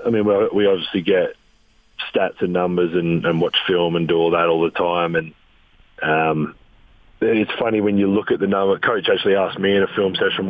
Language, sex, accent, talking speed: English, male, Australian, 215 wpm